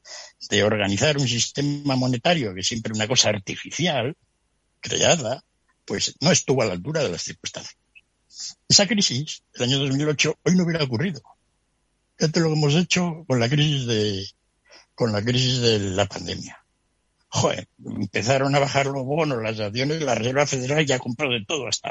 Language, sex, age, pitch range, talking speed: Spanish, male, 60-79, 105-145 Hz, 175 wpm